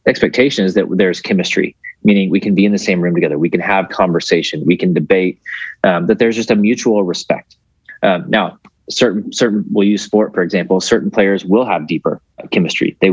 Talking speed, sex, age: 200 wpm, male, 30-49